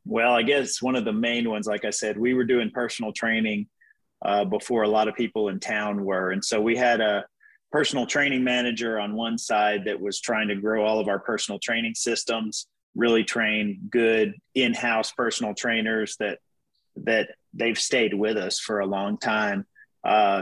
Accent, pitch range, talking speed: American, 105-120 Hz, 190 wpm